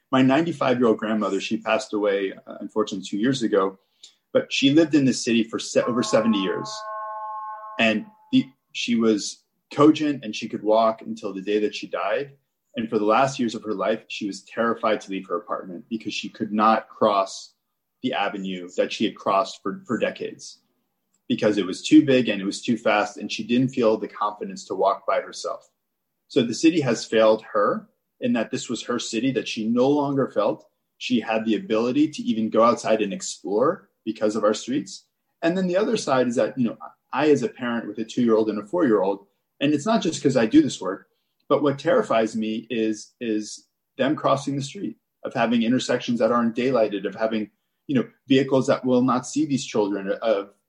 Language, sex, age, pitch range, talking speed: English, male, 20-39, 110-155 Hz, 200 wpm